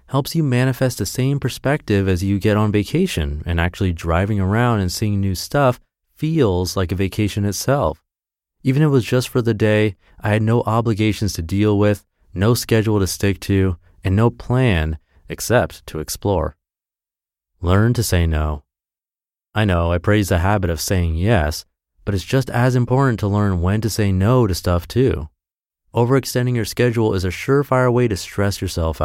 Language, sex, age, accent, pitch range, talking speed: English, male, 30-49, American, 90-115 Hz, 180 wpm